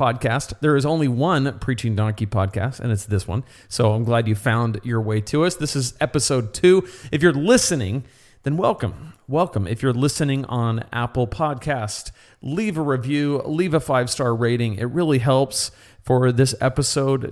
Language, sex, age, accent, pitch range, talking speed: English, male, 40-59, American, 120-155 Hz, 175 wpm